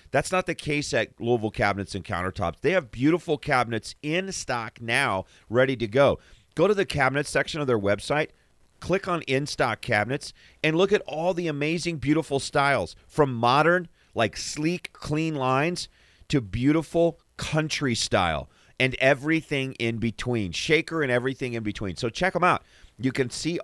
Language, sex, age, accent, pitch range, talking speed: English, male, 40-59, American, 110-145 Hz, 165 wpm